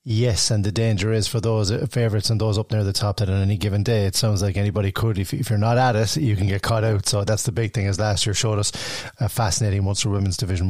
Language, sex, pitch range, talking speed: English, male, 100-115 Hz, 280 wpm